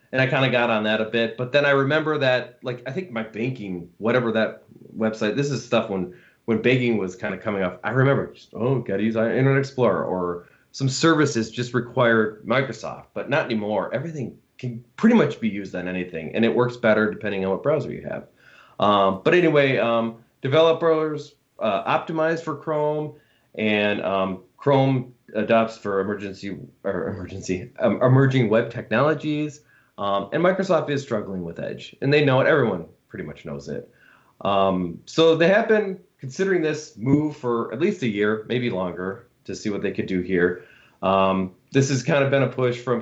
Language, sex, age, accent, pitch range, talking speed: English, male, 20-39, American, 105-140 Hz, 190 wpm